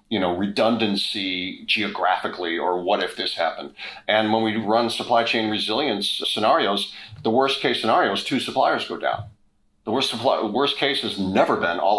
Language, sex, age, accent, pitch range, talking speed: English, male, 40-59, American, 95-115 Hz, 175 wpm